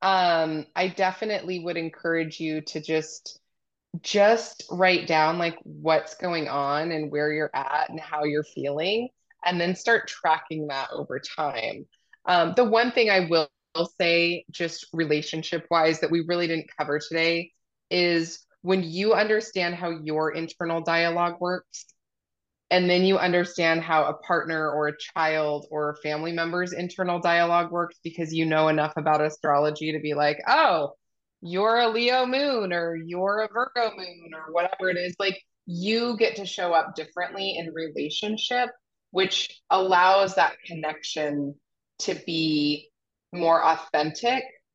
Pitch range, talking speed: 155-185 Hz, 150 wpm